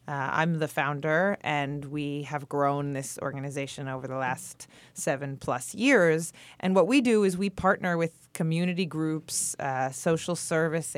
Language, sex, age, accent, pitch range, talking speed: English, female, 30-49, American, 145-175 Hz, 155 wpm